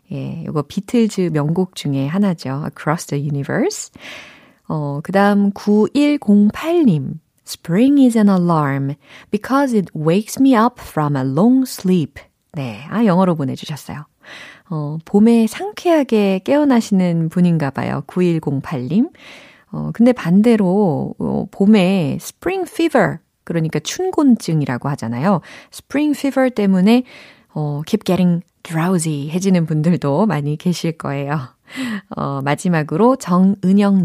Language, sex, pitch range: Korean, female, 155-240 Hz